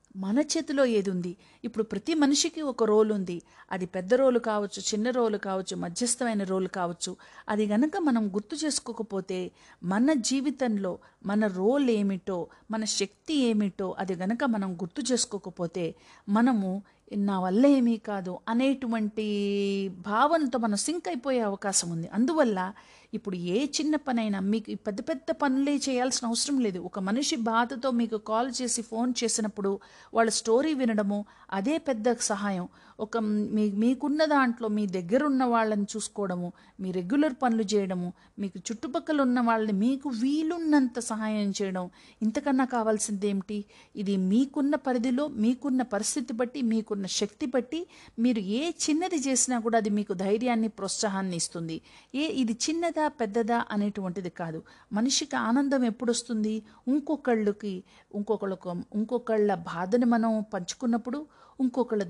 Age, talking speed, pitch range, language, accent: 50-69, 130 wpm, 200-260 Hz, Telugu, native